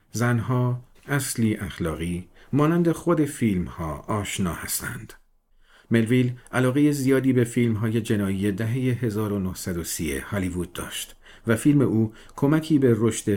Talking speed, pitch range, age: 115 wpm, 95-125 Hz, 50-69